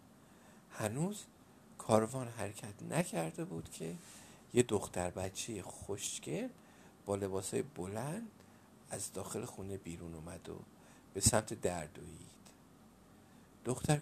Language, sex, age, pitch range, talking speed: Persian, male, 50-69, 100-140 Hz, 100 wpm